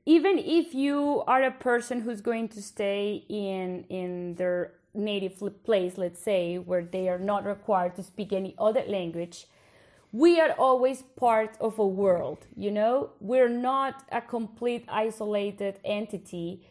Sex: female